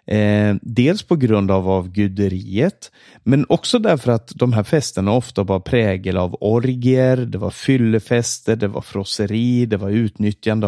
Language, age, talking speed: Swedish, 30-49, 155 wpm